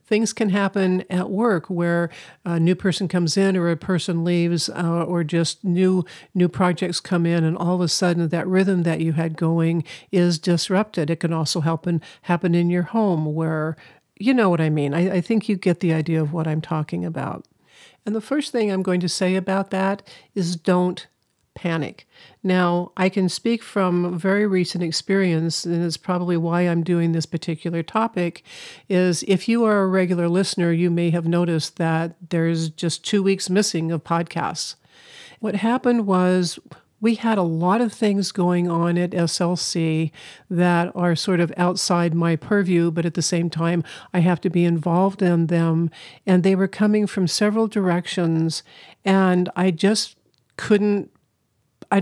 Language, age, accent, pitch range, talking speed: English, 50-69, American, 170-190 Hz, 180 wpm